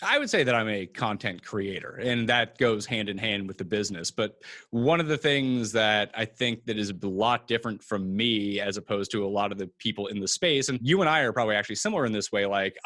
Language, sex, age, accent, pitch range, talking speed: English, male, 30-49, American, 105-125 Hz, 255 wpm